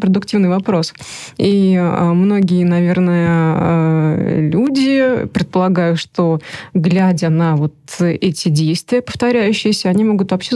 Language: Russian